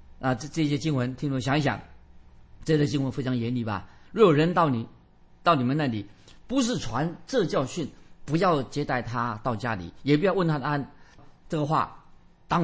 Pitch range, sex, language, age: 125-155 Hz, male, Chinese, 50-69